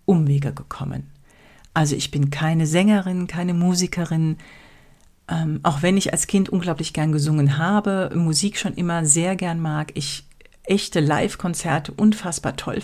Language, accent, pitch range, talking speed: German, German, 145-195 Hz, 140 wpm